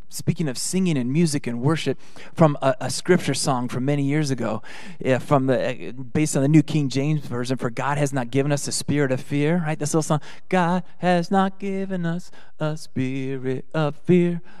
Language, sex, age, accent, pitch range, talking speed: English, male, 30-49, American, 130-175 Hz, 205 wpm